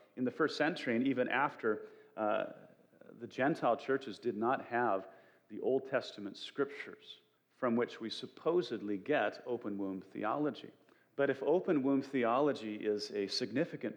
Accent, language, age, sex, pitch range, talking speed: American, English, 40-59, male, 105-140 Hz, 145 wpm